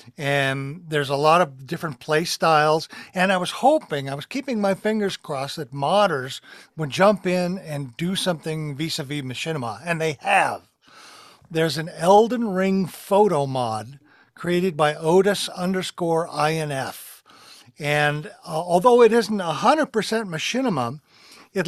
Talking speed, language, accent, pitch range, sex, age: 140 wpm, English, American, 150-195 Hz, male, 50-69